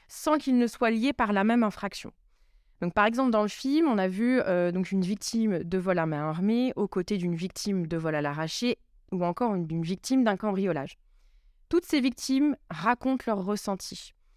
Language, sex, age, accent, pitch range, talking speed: French, female, 20-39, French, 180-235 Hz, 195 wpm